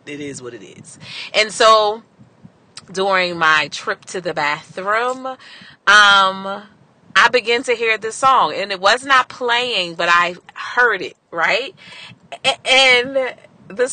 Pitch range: 175-245 Hz